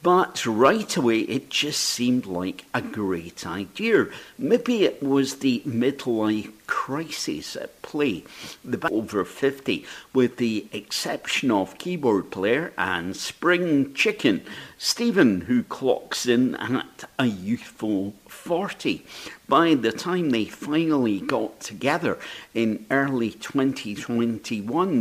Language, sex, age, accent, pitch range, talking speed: English, male, 50-69, British, 115-170 Hz, 115 wpm